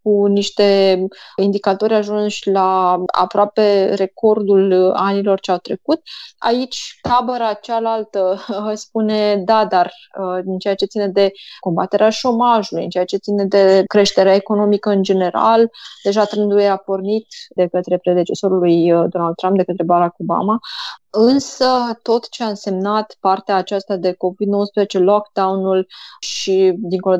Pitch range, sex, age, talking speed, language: 190-220 Hz, female, 20-39, 130 wpm, Romanian